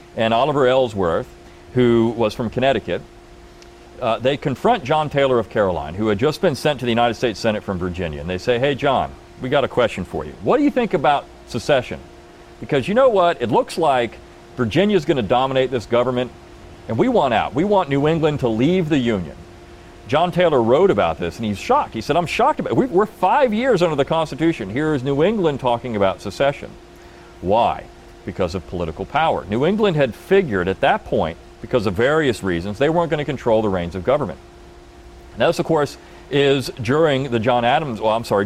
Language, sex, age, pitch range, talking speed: English, male, 40-59, 105-145 Hz, 205 wpm